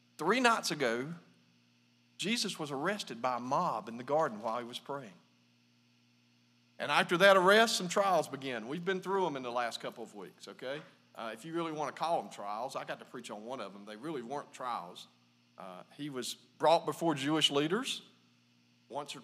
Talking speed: 200 wpm